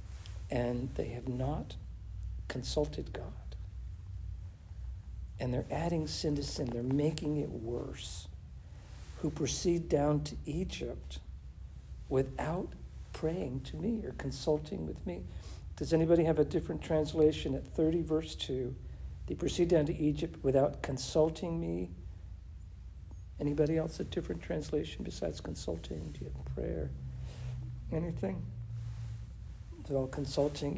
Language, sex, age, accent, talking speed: English, male, 60-79, American, 110 wpm